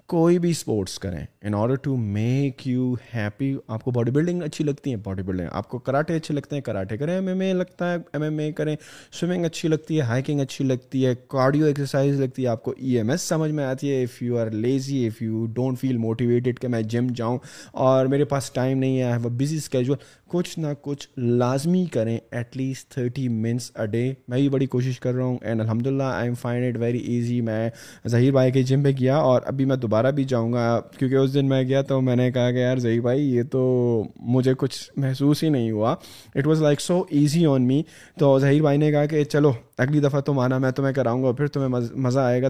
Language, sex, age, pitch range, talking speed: Urdu, male, 20-39, 120-145 Hz, 230 wpm